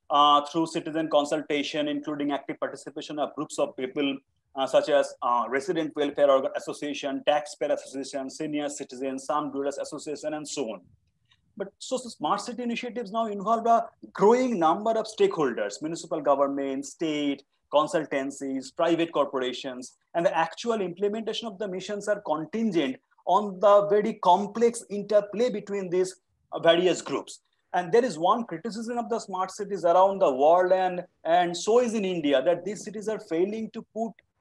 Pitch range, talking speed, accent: 155-220 Hz, 160 wpm, Indian